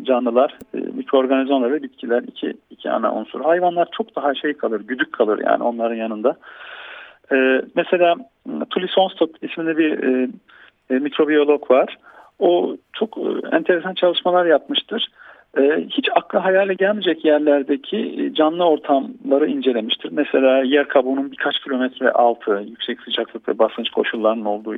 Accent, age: native, 50-69